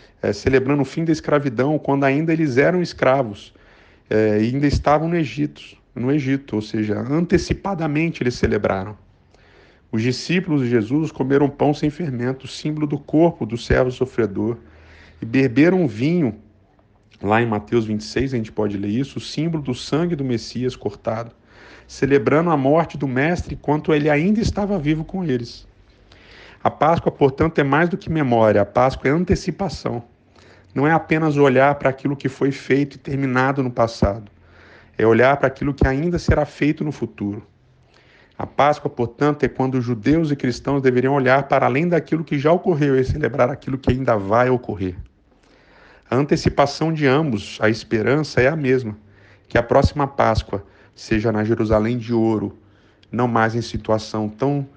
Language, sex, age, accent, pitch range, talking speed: Portuguese, male, 50-69, Brazilian, 105-145 Hz, 165 wpm